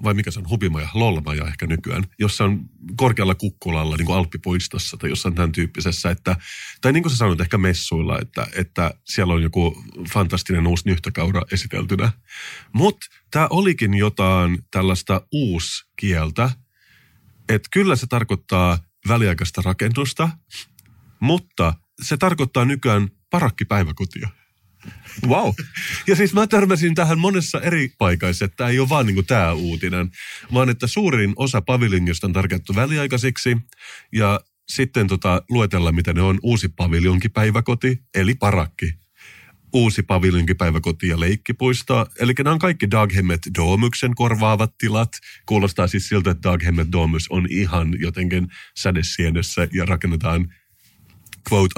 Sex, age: male, 30-49